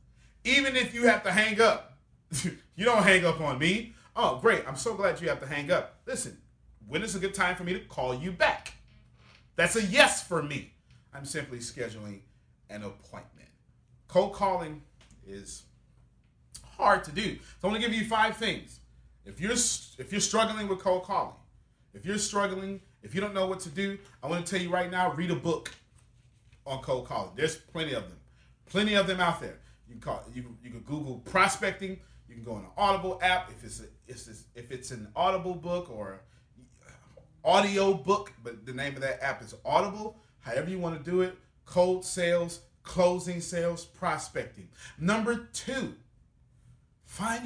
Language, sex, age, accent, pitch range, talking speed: English, male, 30-49, American, 120-195 Hz, 185 wpm